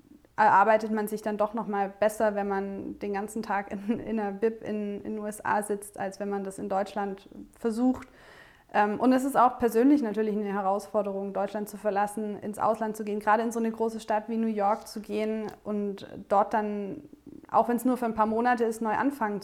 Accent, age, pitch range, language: German, 20-39, 210-235 Hz, English